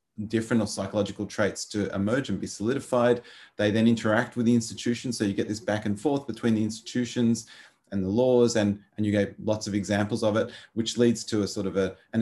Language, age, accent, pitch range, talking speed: English, 30-49, Australian, 100-120 Hz, 220 wpm